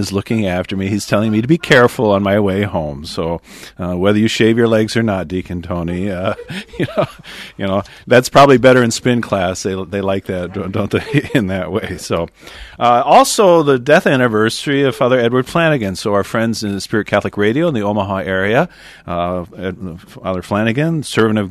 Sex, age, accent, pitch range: male, 40-59, American, 90-110 Hz